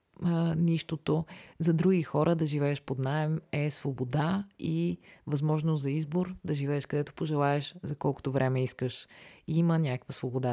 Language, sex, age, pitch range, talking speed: Bulgarian, female, 30-49, 130-160 Hz, 150 wpm